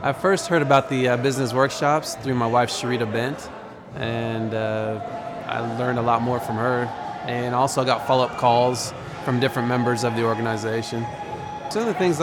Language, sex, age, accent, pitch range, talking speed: English, male, 20-39, American, 120-140 Hz, 180 wpm